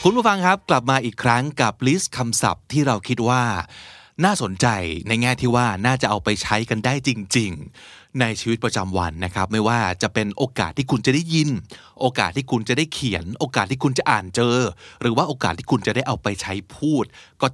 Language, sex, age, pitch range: Thai, male, 20-39, 105-150 Hz